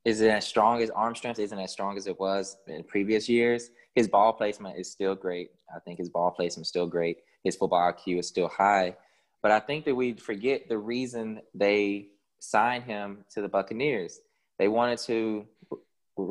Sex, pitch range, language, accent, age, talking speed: male, 100-115 Hz, English, American, 20-39, 195 wpm